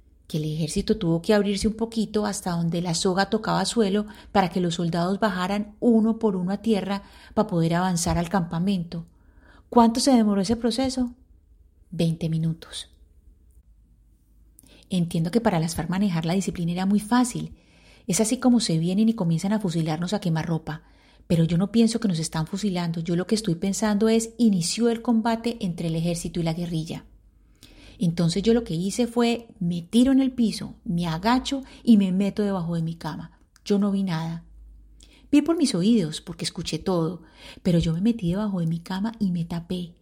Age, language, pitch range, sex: 30-49, Spanish, 165-220 Hz, female